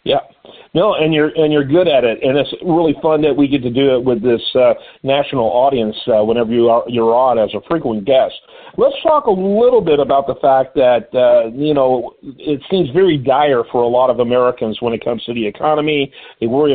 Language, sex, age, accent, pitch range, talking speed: English, male, 50-69, American, 120-155 Hz, 225 wpm